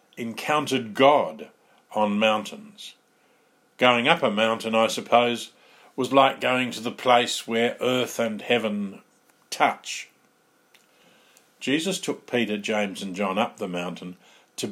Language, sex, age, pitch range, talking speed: English, male, 50-69, 110-170 Hz, 125 wpm